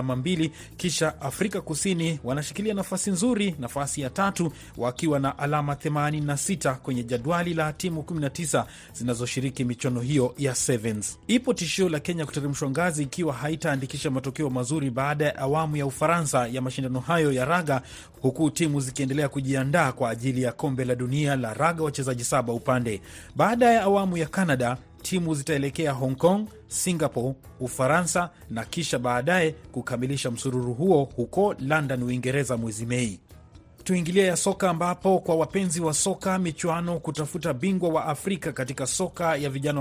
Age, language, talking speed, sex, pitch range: 30-49, Swahili, 150 wpm, male, 130-170 Hz